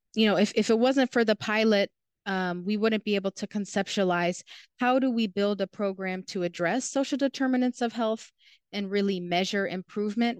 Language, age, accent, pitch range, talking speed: English, 30-49, American, 180-210 Hz, 185 wpm